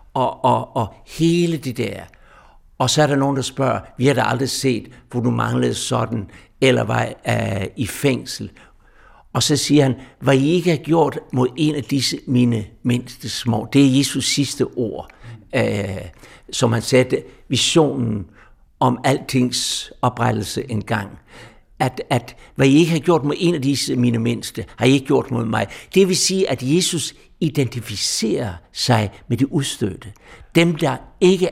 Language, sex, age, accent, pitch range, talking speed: Danish, male, 60-79, native, 120-150 Hz, 175 wpm